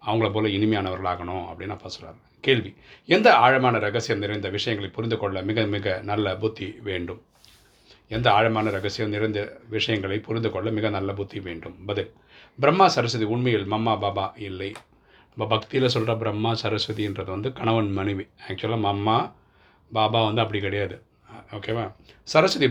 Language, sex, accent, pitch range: Tamil, male, native, 100-115 Hz